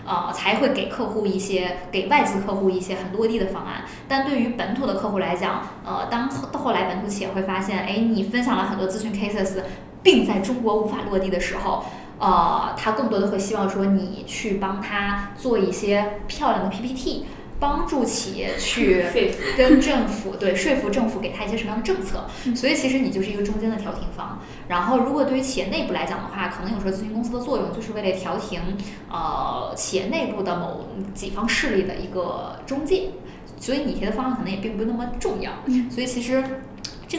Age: 20-39